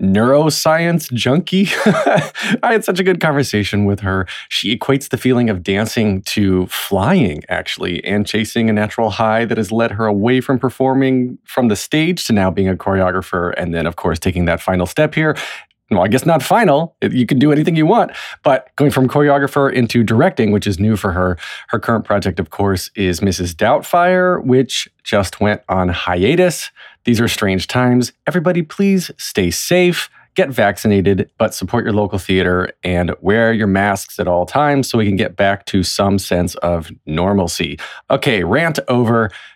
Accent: American